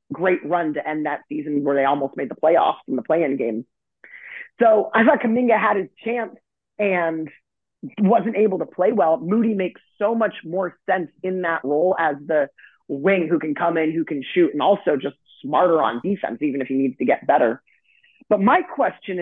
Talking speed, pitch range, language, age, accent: 200 wpm, 165-220 Hz, English, 30-49, American